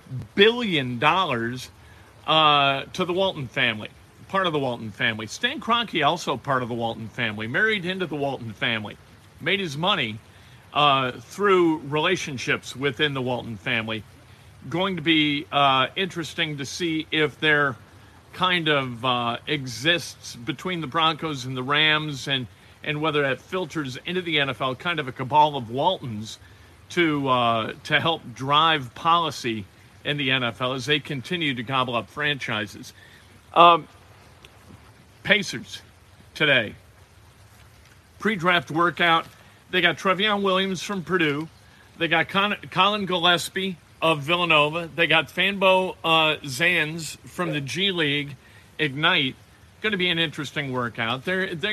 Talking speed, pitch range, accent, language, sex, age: 135 wpm, 120-170 Hz, American, English, male, 40-59